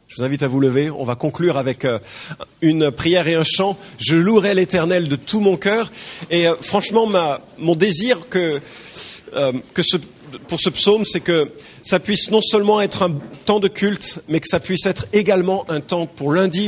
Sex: male